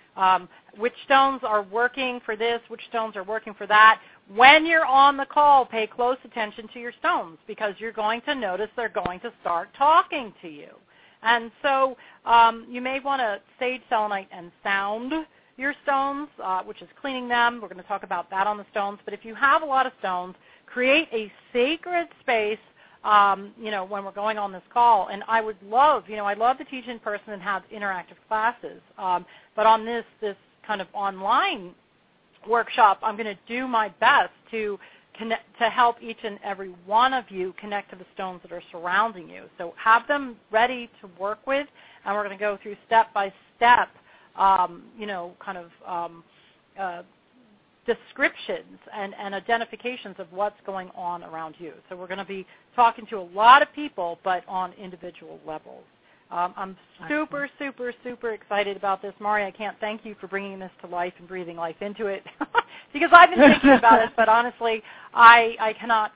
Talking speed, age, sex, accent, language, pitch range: 195 wpm, 40-59, female, American, English, 195-240 Hz